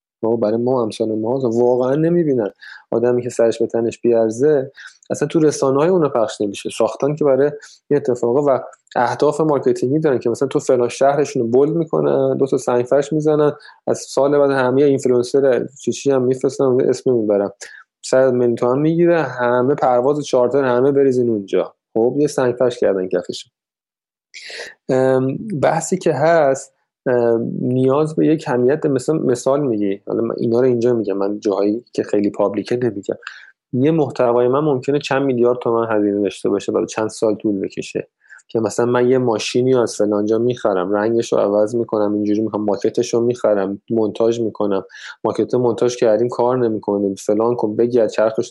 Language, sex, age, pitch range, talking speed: Persian, male, 20-39, 115-135 Hz, 160 wpm